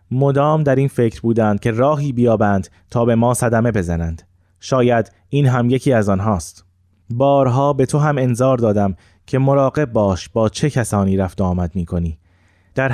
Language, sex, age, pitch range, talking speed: Persian, male, 20-39, 95-130 Hz, 165 wpm